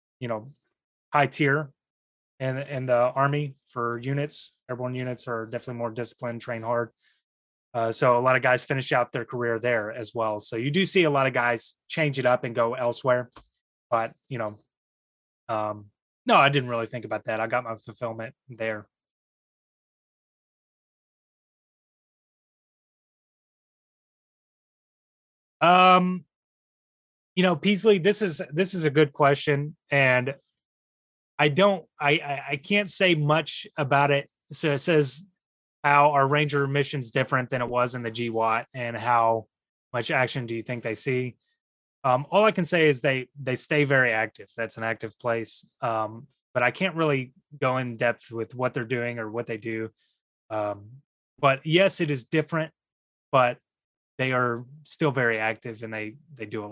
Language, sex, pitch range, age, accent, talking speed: English, male, 115-145 Hz, 20-39, American, 165 wpm